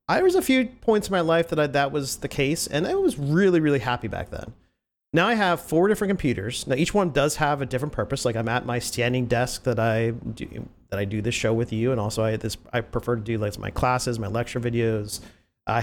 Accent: American